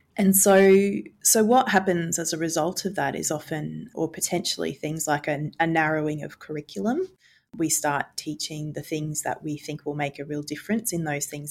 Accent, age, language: Australian, 30-49, English